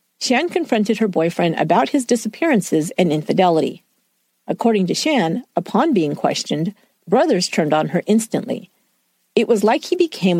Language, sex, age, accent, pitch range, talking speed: English, female, 50-69, American, 175-245 Hz, 145 wpm